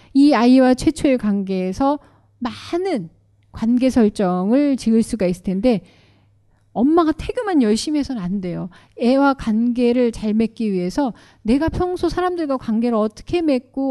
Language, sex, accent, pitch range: Korean, female, native, 195-285 Hz